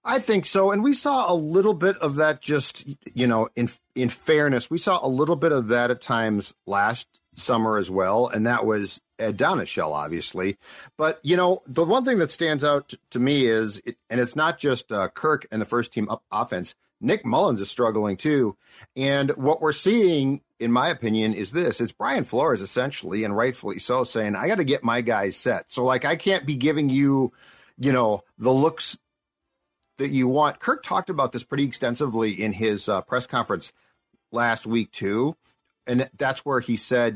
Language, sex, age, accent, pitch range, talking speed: English, male, 40-59, American, 115-165 Hz, 200 wpm